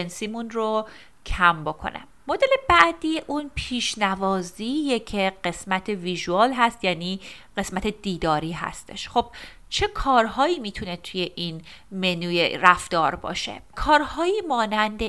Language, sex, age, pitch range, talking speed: Persian, female, 30-49, 180-235 Hz, 110 wpm